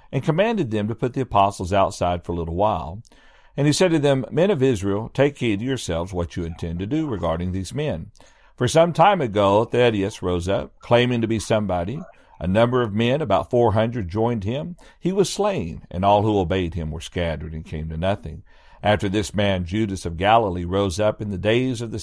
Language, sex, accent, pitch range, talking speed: English, male, American, 90-125 Hz, 210 wpm